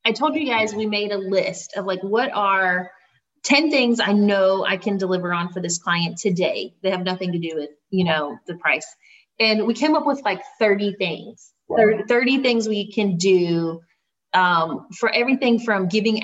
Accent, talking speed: American, 190 wpm